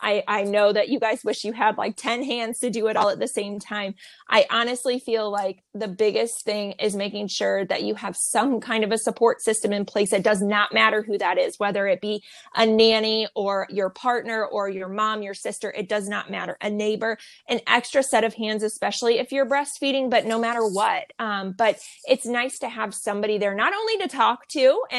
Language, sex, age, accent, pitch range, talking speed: English, female, 20-39, American, 205-245 Hz, 225 wpm